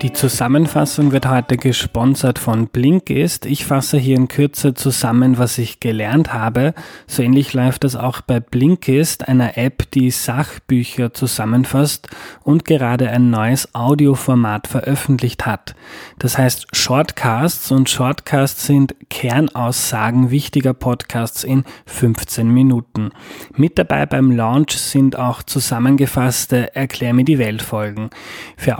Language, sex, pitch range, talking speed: German, male, 120-140 Hz, 125 wpm